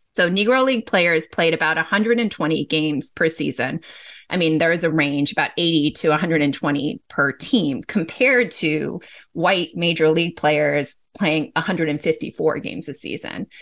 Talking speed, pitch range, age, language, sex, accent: 145 wpm, 160-200 Hz, 30-49, English, female, American